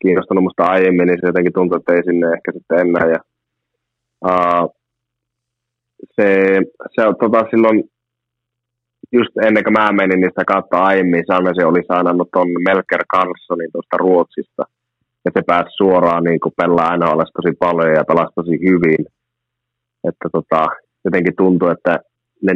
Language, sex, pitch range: Finnish, male, 85-115 Hz